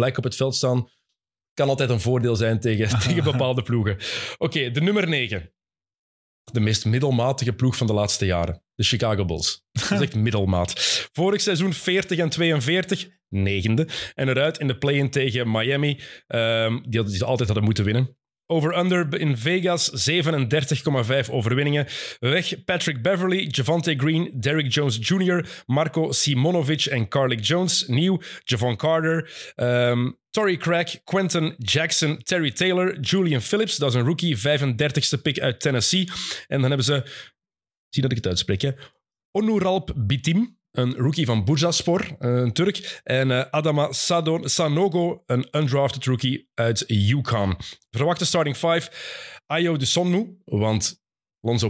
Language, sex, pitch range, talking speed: Dutch, male, 120-165 Hz, 150 wpm